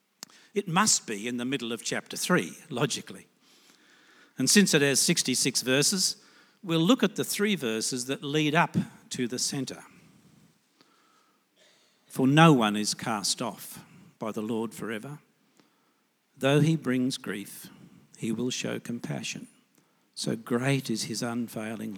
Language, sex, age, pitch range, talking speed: English, male, 60-79, 135-210 Hz, 140 wpm